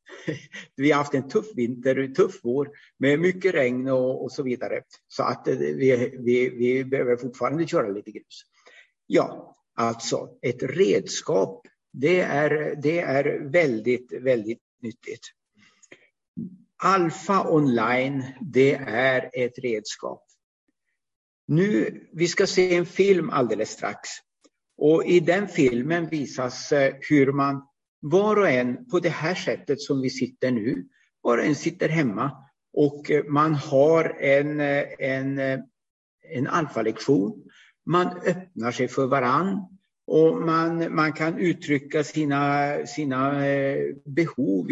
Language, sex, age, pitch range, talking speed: Swedish, male, 60-79, 130-165 Hz, 125 wpm